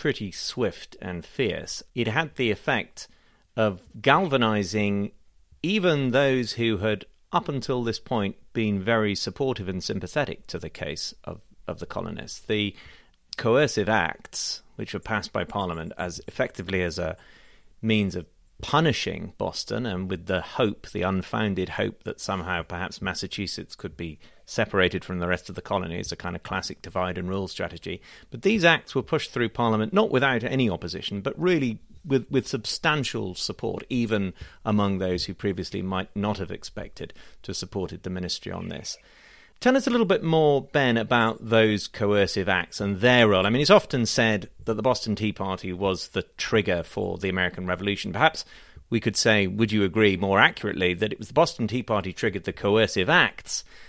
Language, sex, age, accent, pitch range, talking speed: English, male, 30-49, British, 95-120 Hz, 175 wpm